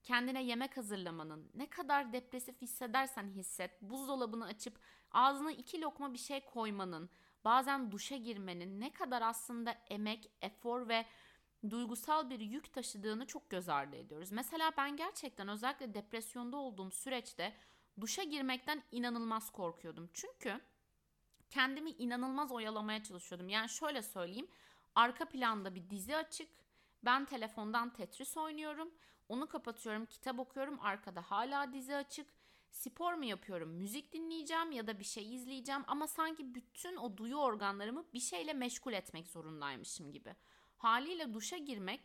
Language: Turkish